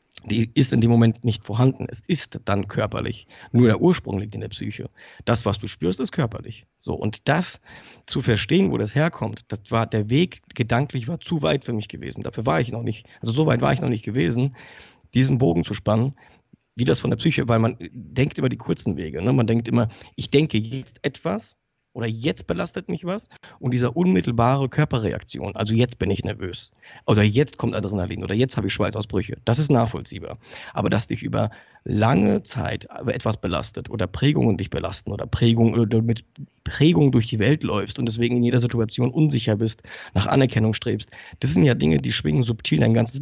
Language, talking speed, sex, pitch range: German, 205 wpm, male, 110-130 Hz